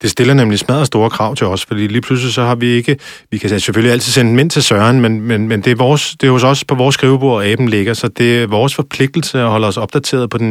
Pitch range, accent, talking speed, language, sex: 105-125 Hz, native, 285 wpm, Danish, male